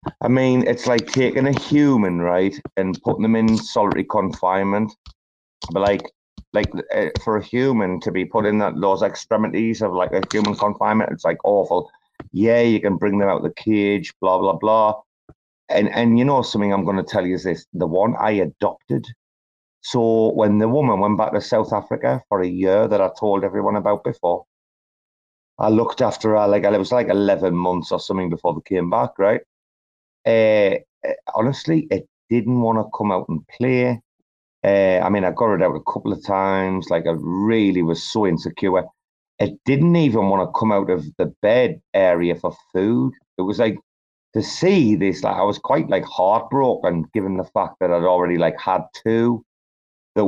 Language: English